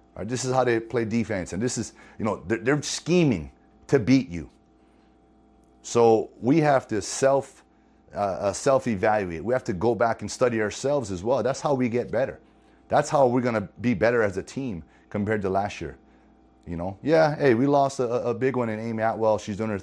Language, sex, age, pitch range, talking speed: English, male, 30-49, 90-120 Hz, 205 wpm